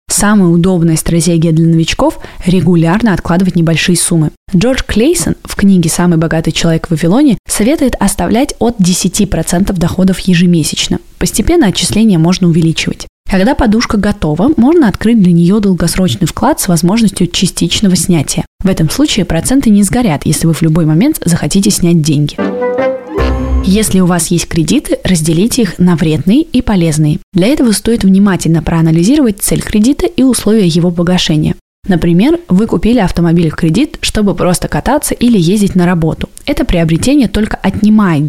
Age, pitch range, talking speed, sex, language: 20-39, 170-220 Hz, 145 wpm, female, Russian